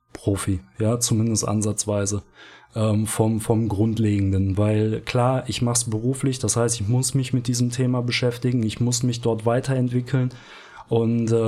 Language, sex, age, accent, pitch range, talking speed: German, male, 20-39, German, 115-130 Hz, 145 wpm